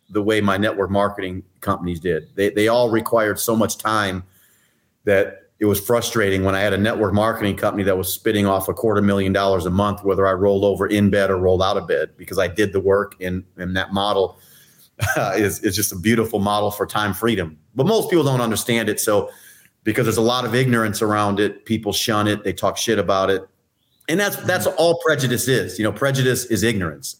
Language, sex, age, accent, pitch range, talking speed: English, male, 30-49, American, 95-115 Hz, 220 wpm